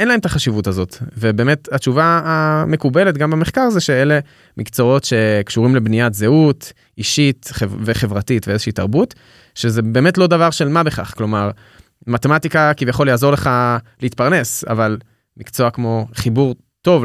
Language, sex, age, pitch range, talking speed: Hebrew, male, 20-39, 115-150 Hz, 135 wpm